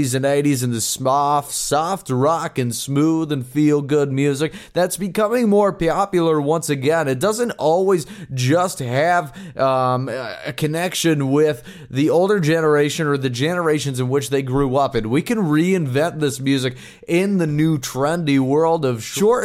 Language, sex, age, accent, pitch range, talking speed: English, male, 20-39, American, 135-170 Hz, 155 wpm